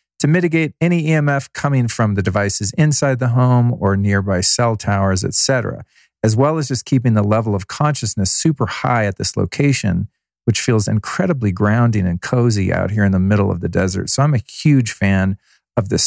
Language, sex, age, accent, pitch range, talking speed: English, male, 40-59, American, 100-130 Hz, 190 wpm